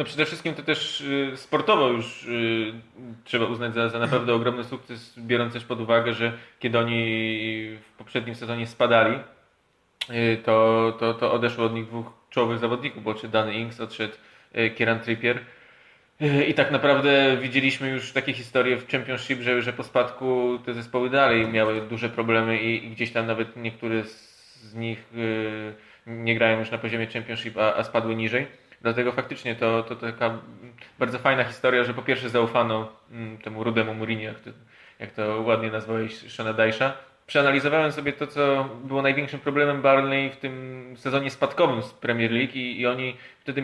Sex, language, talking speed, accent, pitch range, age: male, Polish, 160 wpm, native, 115-135 Hz, 20-39